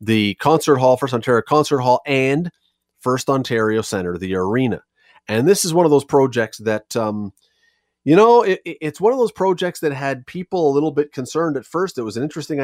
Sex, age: male, 30-49